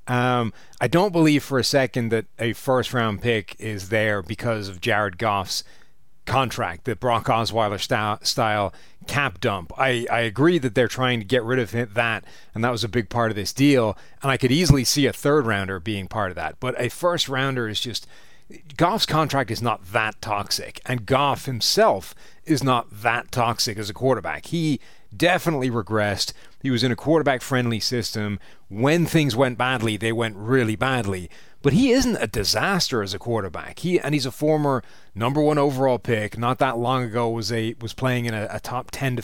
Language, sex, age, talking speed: English, male, 30-49, 190 wpm